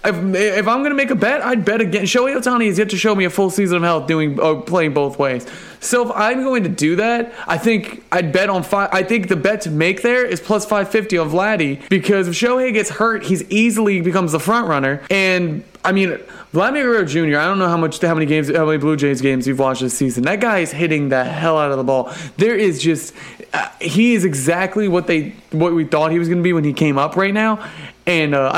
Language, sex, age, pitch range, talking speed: English, male, 20-39, 155-210 Hz, 260 wpm